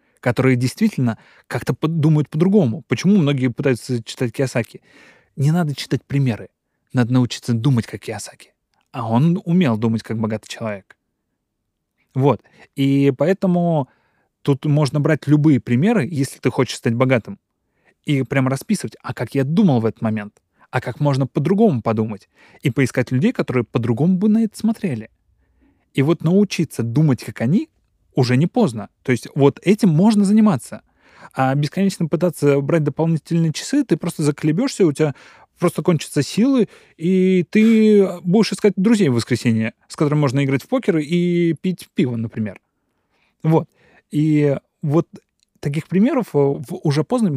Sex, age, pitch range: male, 20-39, 130-180 Hz